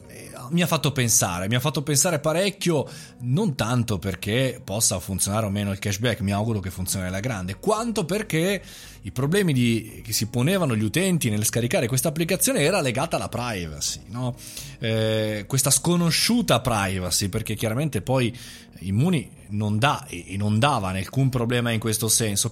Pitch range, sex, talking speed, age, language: 110-150 Hz, male, 165 wpm, 30-49, Italian